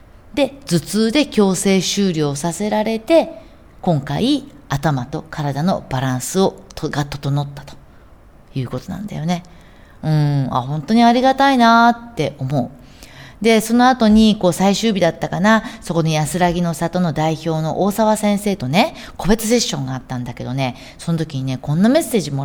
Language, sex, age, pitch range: Japanese, female, 40-59, 140-225 Hz